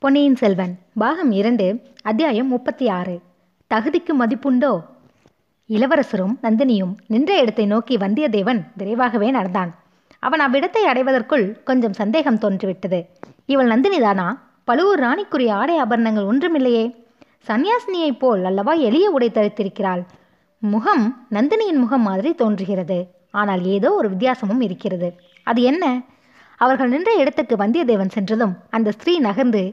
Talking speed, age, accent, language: 115 wpm, 20-39, native, Tamil